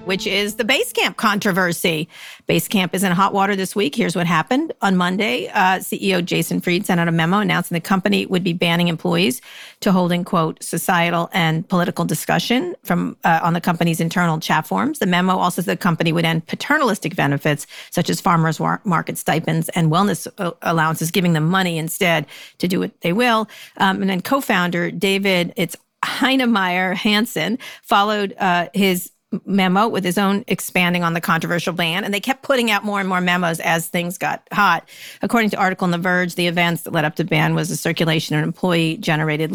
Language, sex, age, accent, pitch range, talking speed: English, female, 50-69, American, 165-200 Hz, 195 wpm